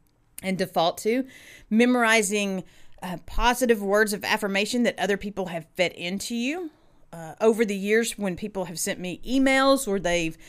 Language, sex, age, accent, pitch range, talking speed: English, female, 40-59, American, 190-255 Hz, 160 wpm